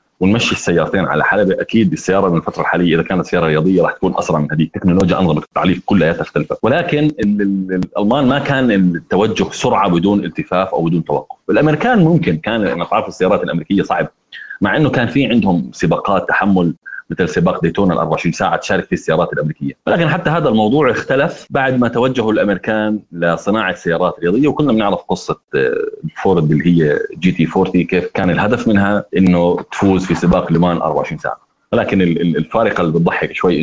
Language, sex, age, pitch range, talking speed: Arabic, male, 30-49, 85-110 Hz, 170 wpm